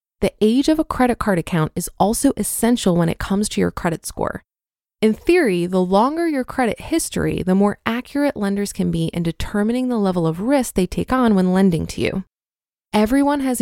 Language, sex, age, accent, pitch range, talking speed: English, female, 20-39, American, 185-245 Hz, 200 wpm